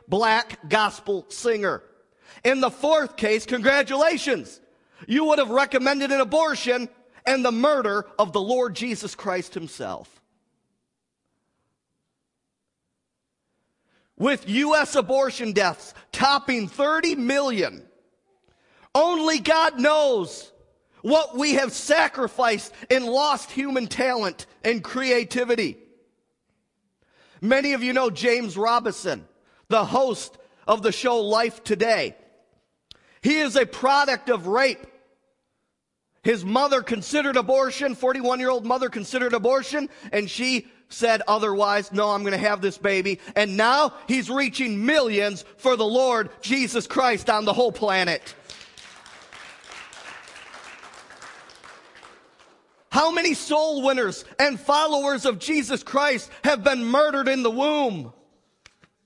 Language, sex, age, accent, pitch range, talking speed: English, male, 40-59, American, 220-280 Hz, 110 wpm